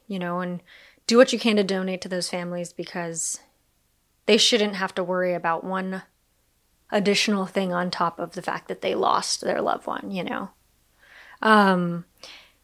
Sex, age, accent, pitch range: female, 20-39, American, 175-215 Hz